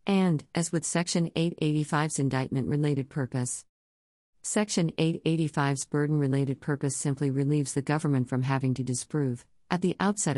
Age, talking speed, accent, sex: 50-69, 125 wpm, American, female